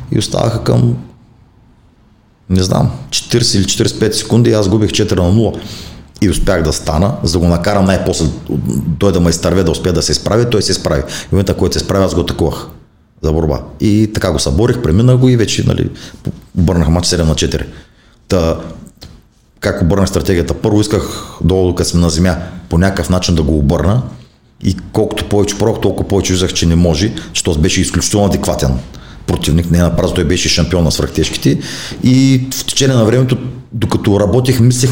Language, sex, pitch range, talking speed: Bulgarian, male, 85-110 Hz, 180 wpm